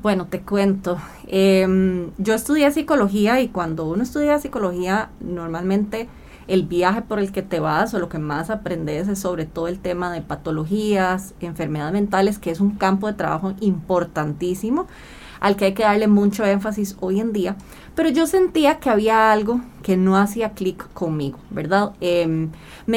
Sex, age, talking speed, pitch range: female, 20-39, 170 wpm, 180-225 Hz